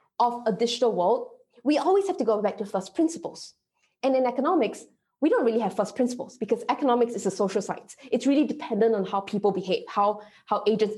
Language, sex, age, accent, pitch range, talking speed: English, female, 20-39, Malaysian, 210-255 Hz, 210 wpm